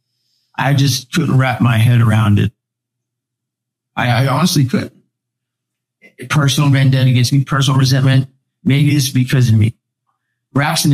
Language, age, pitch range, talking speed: English, 50-69, 120-135 Hz, 130 wpm